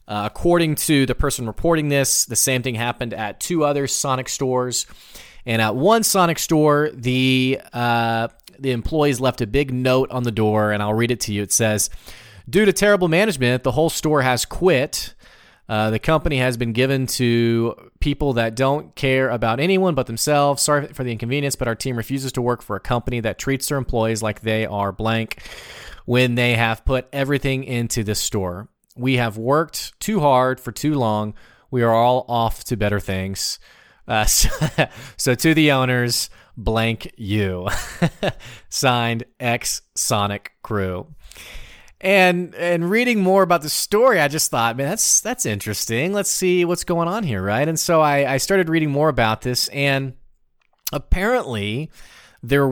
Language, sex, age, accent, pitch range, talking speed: English, male, 30-49, American, 115-145 Hz, 175 wpm